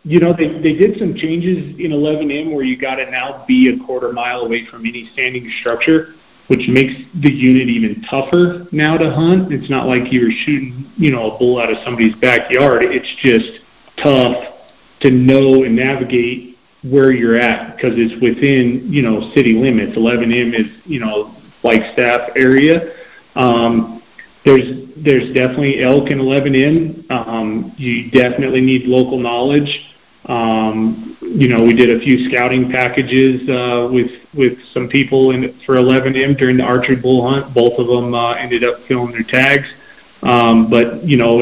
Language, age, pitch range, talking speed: English, 40-59, 120-135 Hz, 170 wpm